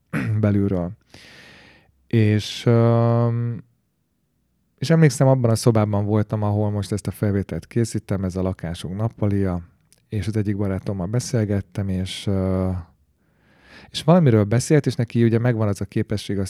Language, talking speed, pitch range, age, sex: Hungarian, 125 wpm, 100-120 Hz, 30-49, male